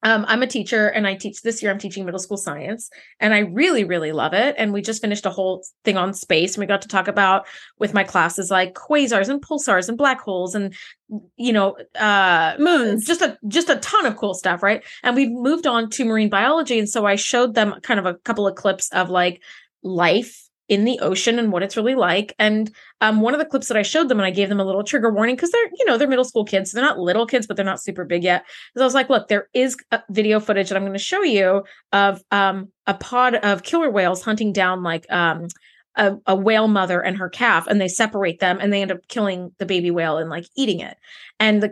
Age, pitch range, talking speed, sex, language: 20-39, 195-245 Hz, 255 wpm, female, English